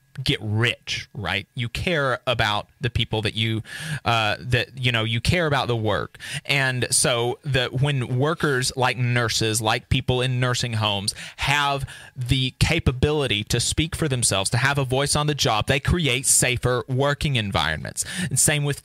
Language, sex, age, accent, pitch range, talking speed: English, male, 30-49, American, 120-160 Hz, 170 wpm